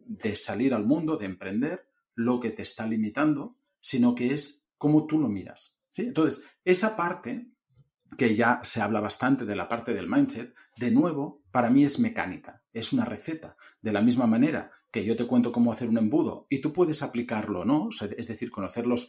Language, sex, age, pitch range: Spanish, male, 40-59, 115-155 Hz